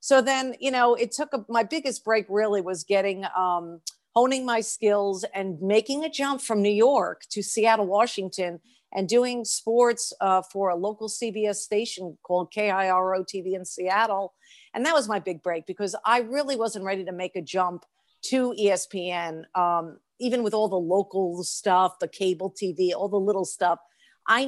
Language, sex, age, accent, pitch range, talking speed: English, female, 50-69, American, 185-225 Hz, 180 wpm